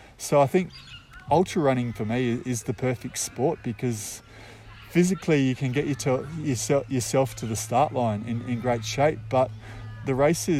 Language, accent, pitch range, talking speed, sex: English, Australian, 110-140 Hz, 160 wpm, male